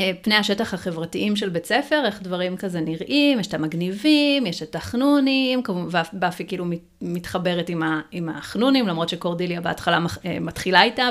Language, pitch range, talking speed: Hebrew, 175-215 Hz, 140 wpm